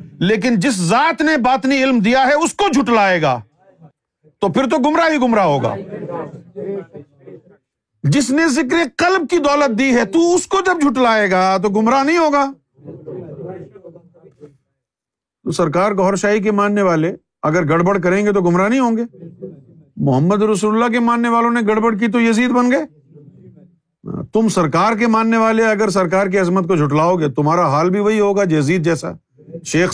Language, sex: Urdu, male